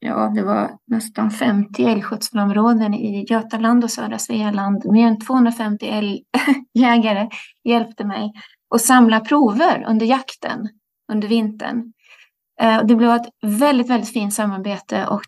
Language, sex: Swedish, female